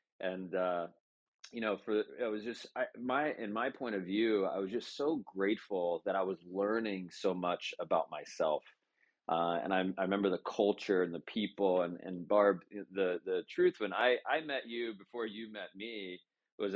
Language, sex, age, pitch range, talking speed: English, male, 30-49, 85-105 Hz, 195 wpm